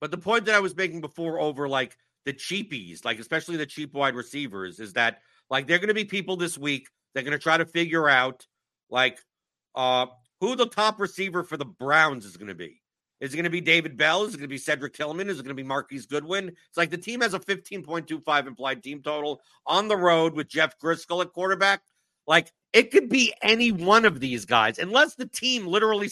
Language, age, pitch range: English, 50-69, 145-185 Hz